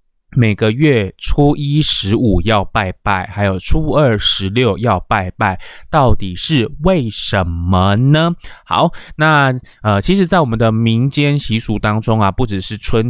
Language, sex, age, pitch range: Chinese, male, 20-39, 100-125 Hz